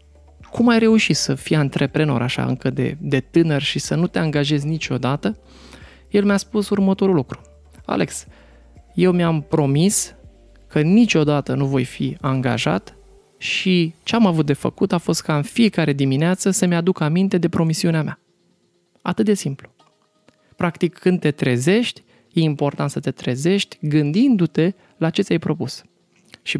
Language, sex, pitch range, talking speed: Romanian, male, 130-175 Hz, 150 wpm